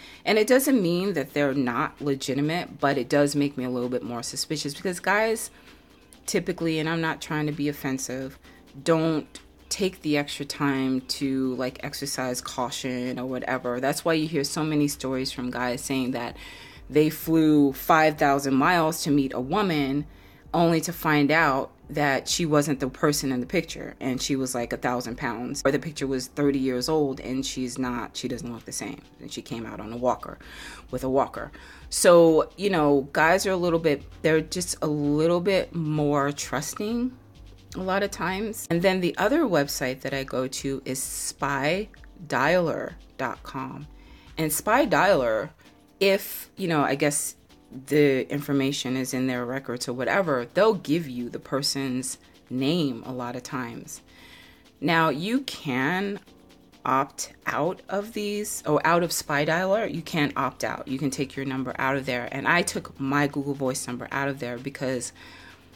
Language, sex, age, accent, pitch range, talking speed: English, female, 30-49, American, 130-160 Hz, 175 wpm